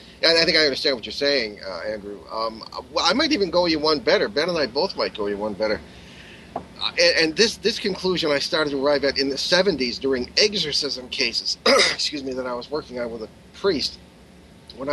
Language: English